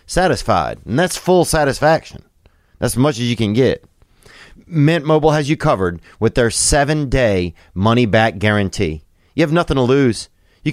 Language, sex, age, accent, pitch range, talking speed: English, male, 30-49, American, 100-135 Hz, 170 wpm